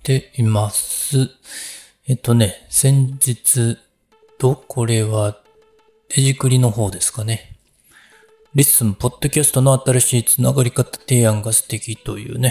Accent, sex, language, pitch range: native, male, Japanese, 105-130 Hz